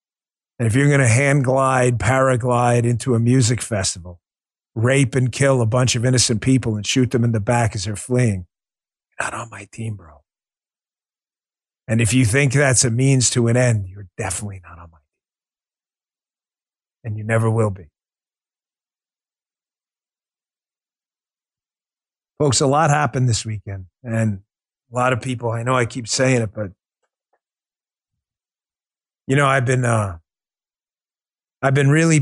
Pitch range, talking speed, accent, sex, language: 115-140 Hz, 155 wpm, American, male, English